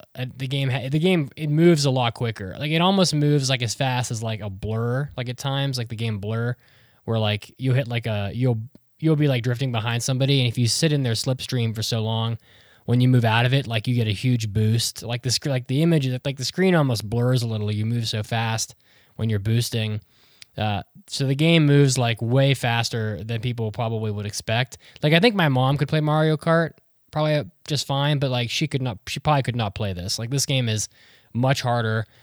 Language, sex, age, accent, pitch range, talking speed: English, male, 10-29, American, 110-140 Hz, 230 wpm